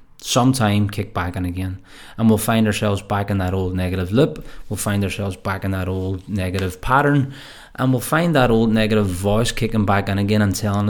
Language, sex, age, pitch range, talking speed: English, male, 20-39, 95-115 Hz, 205 wpm